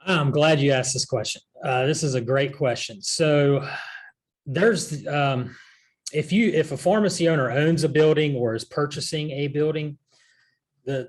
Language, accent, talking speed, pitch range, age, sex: English, American, 160 wpm, 120-150 Hz, 30-49, male